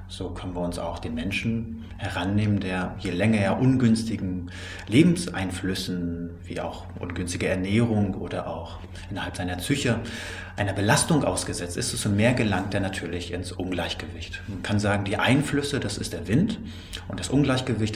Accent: German